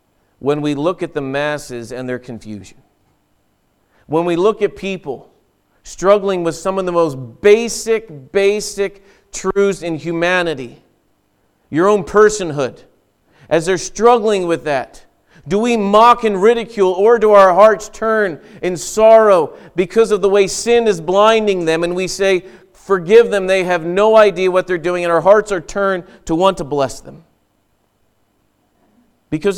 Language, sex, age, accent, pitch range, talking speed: English, male, 40-59, American, 155-205 Hz, 155 wpm